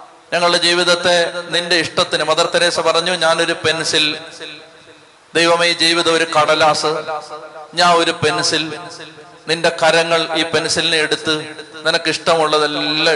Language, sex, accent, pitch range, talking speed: Malayalam, male, native, 155-170 Hz, 100 wpm